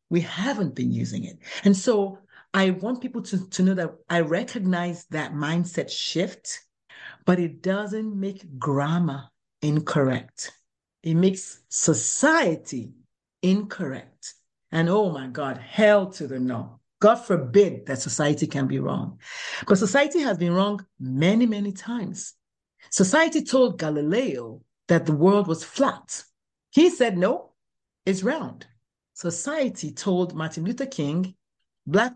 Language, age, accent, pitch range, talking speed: English, 60-79, Nigerian, 165-235 Hz, 130 wpm